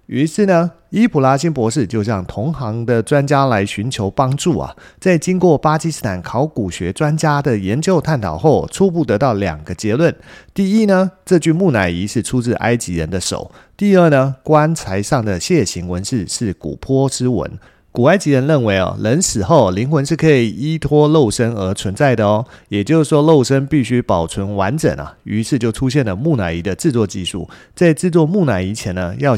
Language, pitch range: Chinese, 100-155 Hz